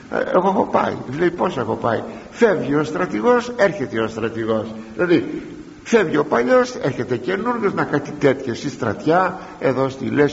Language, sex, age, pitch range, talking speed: Greek, male, 60-79, 120-195 Hz, 155 wpm